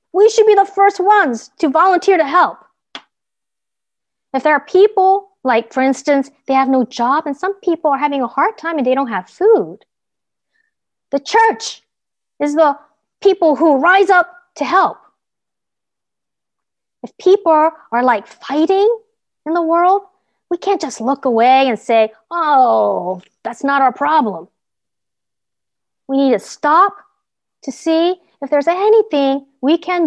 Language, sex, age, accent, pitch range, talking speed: English, female, 40-59, American, 230-350 Hz, 150 wpm